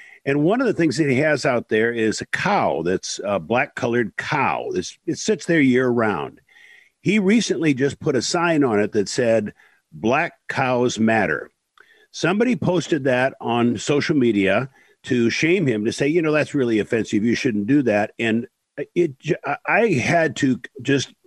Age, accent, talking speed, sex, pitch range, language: 50-69, American, 180 wpm, male, 110-150 Hz, English